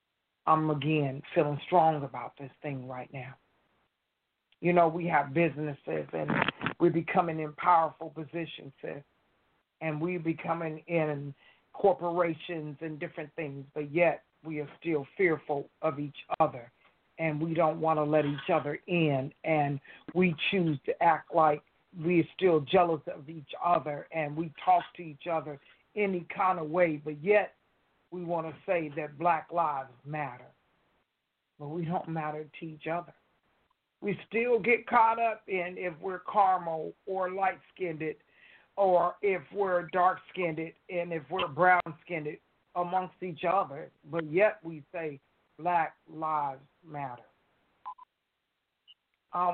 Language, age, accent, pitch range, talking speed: English, 50-69, American, 150-180 Hz, 140 wpm